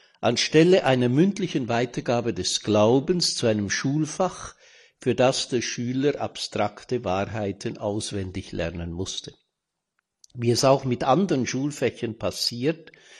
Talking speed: 115 wpm